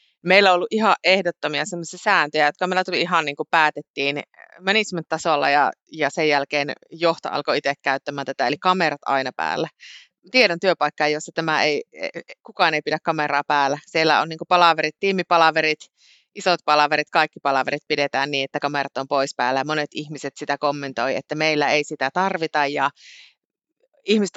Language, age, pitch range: Finnish, 30-49, 145-180 Hz